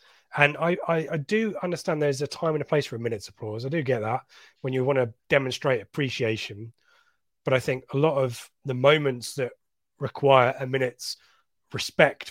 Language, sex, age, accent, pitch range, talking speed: English, male, 30-49, British, 125-155 Hz, 190 wpm